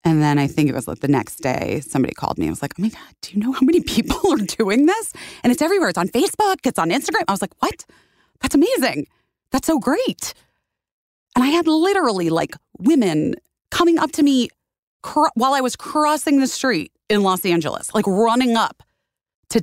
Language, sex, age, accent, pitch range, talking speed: English, female, 30-49, American, 150-240 Hz, 210 wpm